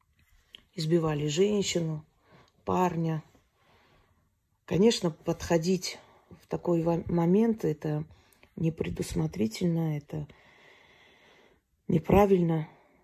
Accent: native